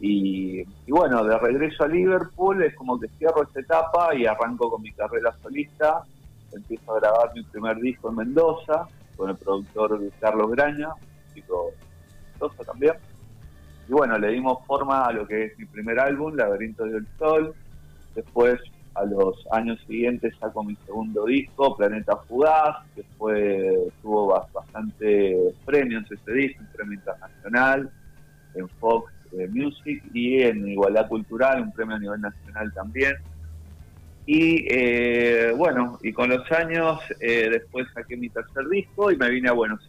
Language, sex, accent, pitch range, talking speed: Spanish, male, Argentinian, 100-145 Hz, 155 wpm